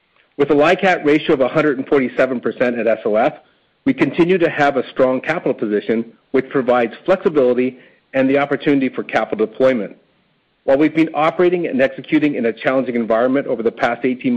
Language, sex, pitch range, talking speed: English, male, 125-160 Hz, 165 wpm